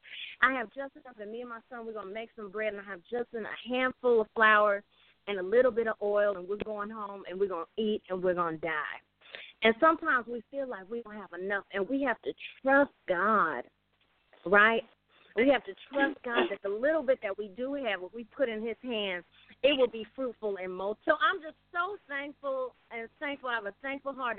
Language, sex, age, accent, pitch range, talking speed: English, female, 40-59, American, 205-260 Hz, 235 wpm